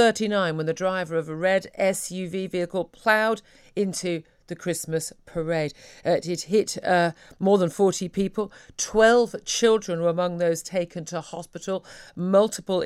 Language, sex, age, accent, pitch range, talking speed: English, female, 50-69, British, 160-195 Hz, 140 wpm